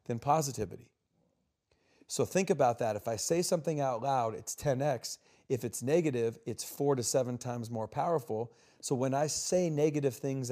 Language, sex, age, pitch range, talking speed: English, male, 40-59, 115-140 Hz, 170 wpm